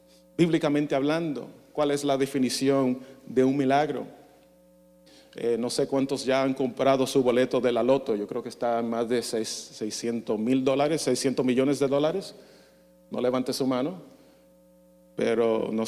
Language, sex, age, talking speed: English, male, 40-59, 155 wpm